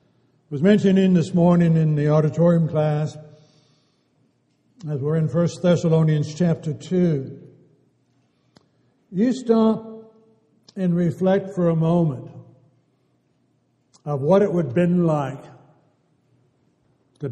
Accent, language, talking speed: American, English, 105 wpm